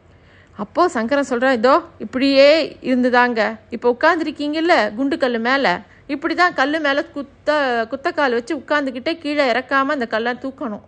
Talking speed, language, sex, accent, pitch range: 130 wpm, Tamil, female, native, 240-300 Hz